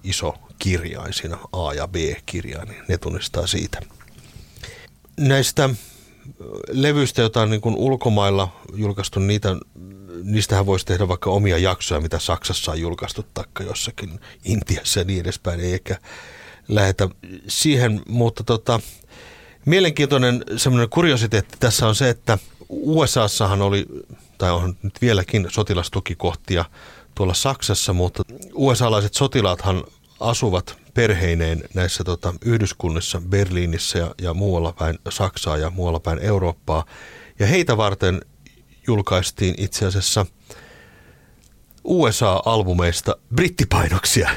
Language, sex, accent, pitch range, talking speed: Finnish, male, native, 90-115 Hz, 110 wpm